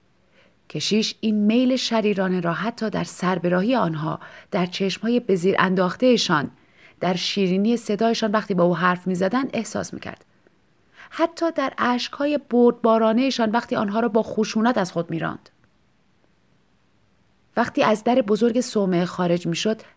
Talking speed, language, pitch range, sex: 125 wpm, Persian, 185-245 Hz, female